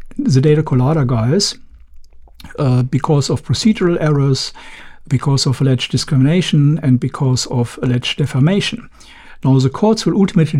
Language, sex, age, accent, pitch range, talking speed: English, male, 60-79, German, 125-150 Hz, 130 wpm